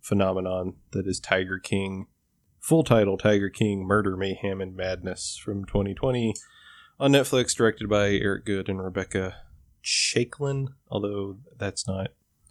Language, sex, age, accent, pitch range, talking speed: English, male, 20-39, American, 95-110 Hz, 130 wpm